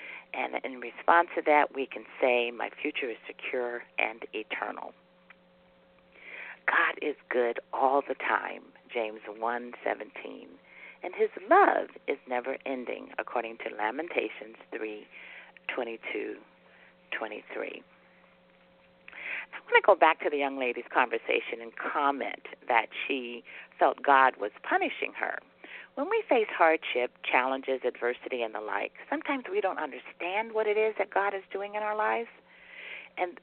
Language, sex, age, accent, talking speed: English, female, 50-69, American, 145 wpm